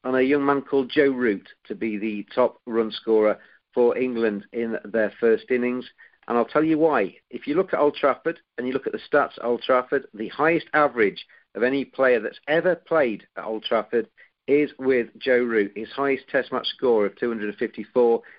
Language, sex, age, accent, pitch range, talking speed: English, male, 50-69, British, 110-135 Hz, 200 wpm